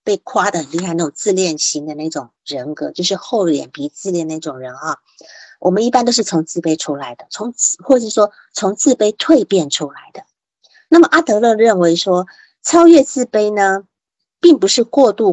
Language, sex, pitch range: Chinese, female, 170-265 Hz